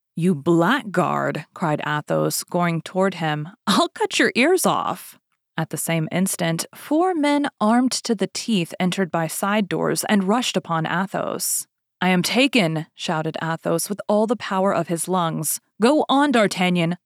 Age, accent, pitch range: 30-49, American, 165-235 Hz